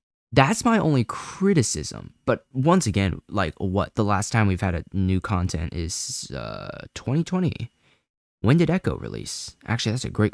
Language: English